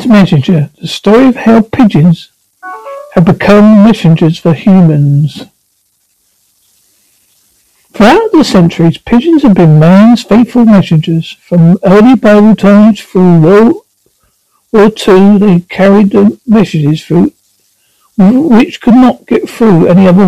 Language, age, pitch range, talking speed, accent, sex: English, 60-79, 165-215 Hz, 120 wpm, British, male